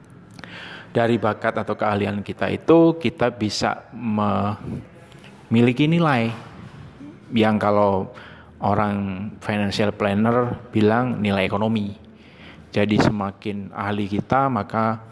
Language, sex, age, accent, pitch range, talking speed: Indonesian, male, 30-49, native, 105-135 Hz, 90 wpm